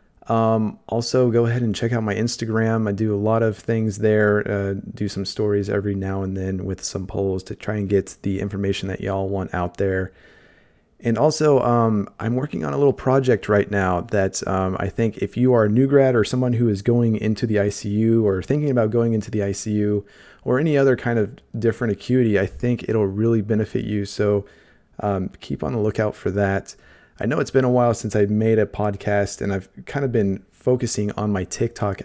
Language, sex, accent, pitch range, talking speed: English, male, American, 95-115 Hz, 215 wpm